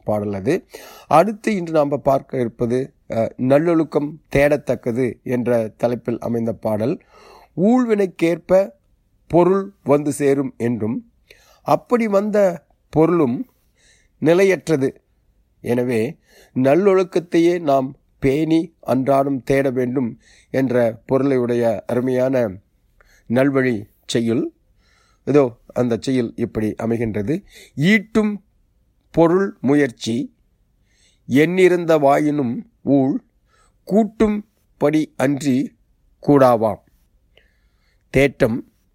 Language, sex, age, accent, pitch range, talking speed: Tamil, male, 30-49, native, 115-160 Hz, 75 wpm